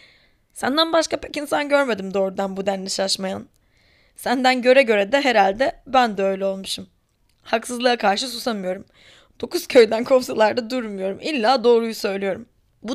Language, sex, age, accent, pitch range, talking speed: Turkish, female, 10-29, native, 190-245 Hz, 135 wpm